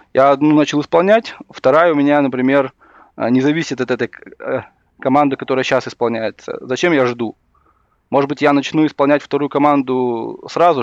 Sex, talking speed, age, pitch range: male, 150 wpm, 20-39, 125-150 Hz